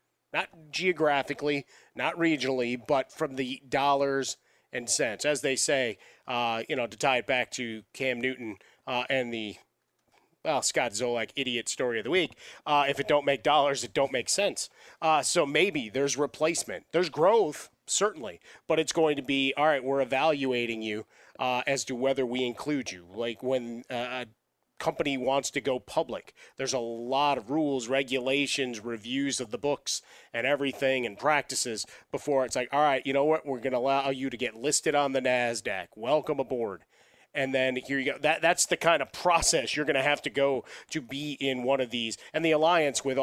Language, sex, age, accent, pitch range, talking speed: English, male, 30-49, American, 125-145 Hz, 195 wpm